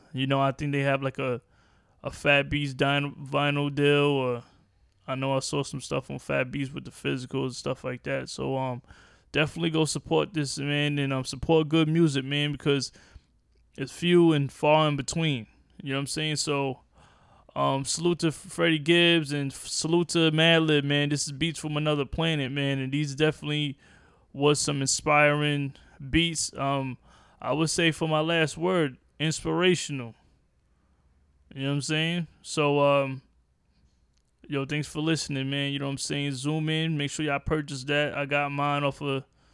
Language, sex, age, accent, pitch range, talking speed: English, male, 20-39, American, 135-155 Hz, 180 wpm